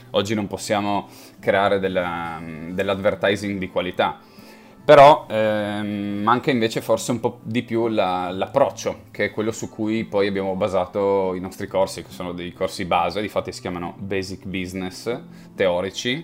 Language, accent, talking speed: Italian, native, 150 wpm